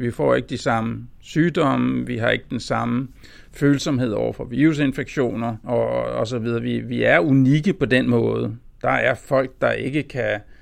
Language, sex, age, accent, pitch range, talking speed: Danish, male, 60-79, native, 120-150 Hz, 170 wpm